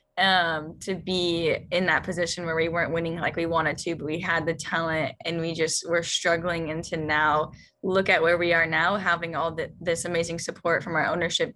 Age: 10-29